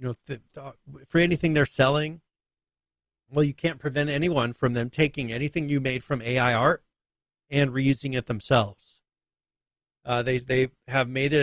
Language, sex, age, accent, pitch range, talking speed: English, male, 40-59, American, 115-140 Hz, 165 wpm